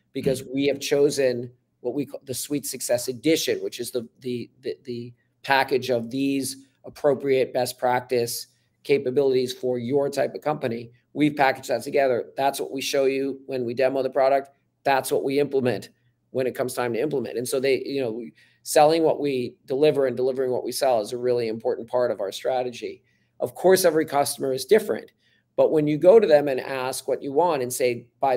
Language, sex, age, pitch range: English, male, 40-59, 125-145 Hz